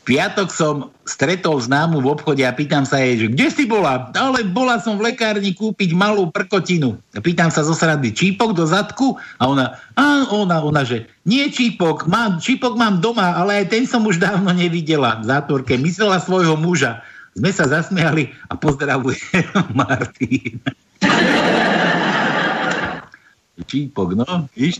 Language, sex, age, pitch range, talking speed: Slovak, male, 60-79, 135-195 Hz, 150 wpm